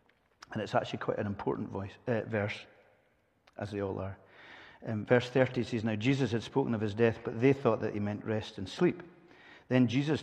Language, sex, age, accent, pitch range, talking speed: English, male, 50-69, British, 105-125 Hz, 200 wpm